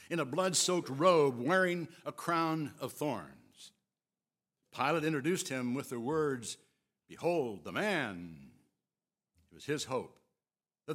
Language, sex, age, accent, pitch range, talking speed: English, male, 60-79, American, 140-205 Hz, 125 wpm